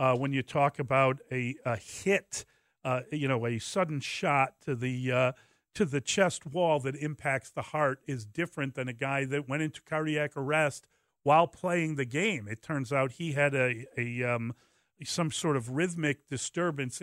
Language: English